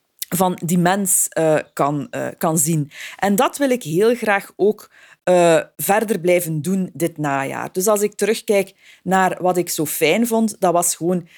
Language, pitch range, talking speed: Dutch, 160-205 Hz, 175 wpm